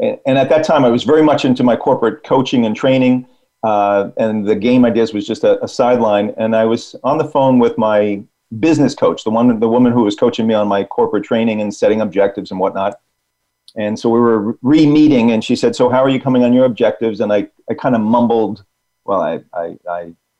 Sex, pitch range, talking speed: male, 110-140 Hz, 225 wpm